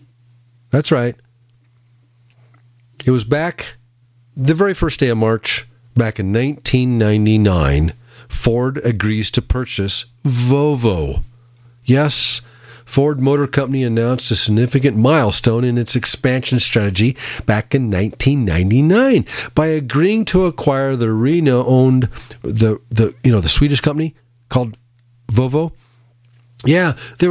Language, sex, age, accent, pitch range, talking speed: English, male, 40-59, American, 110-130 Hz, 110 wpm